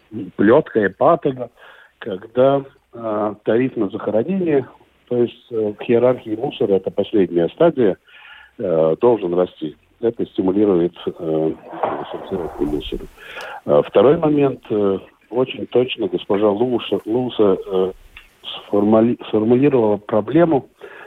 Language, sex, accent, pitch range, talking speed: Russian, male, native, 90-125 Hz, 110 wpm